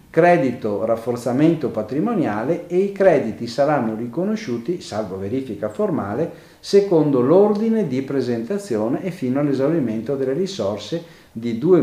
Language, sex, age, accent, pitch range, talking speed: Italian, male, 50-69, native, 115-165 Hz, 110 wpm